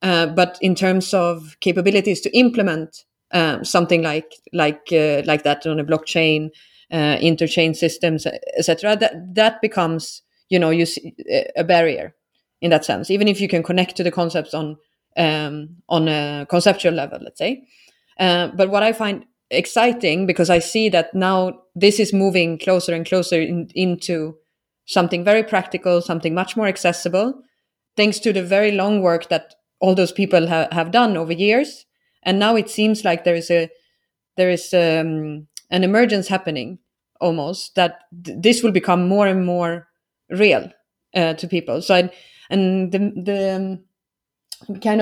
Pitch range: 170-205 Hz